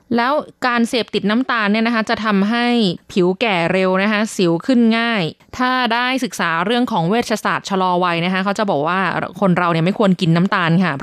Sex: female